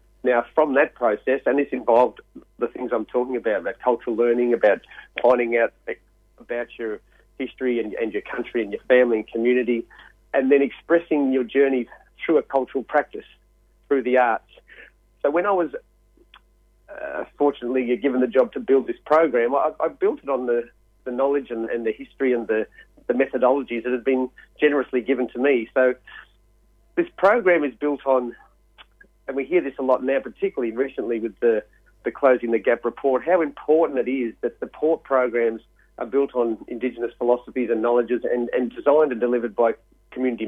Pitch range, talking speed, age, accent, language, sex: 120-135 Hz, 180 wpm, 40-59, Australian, English, male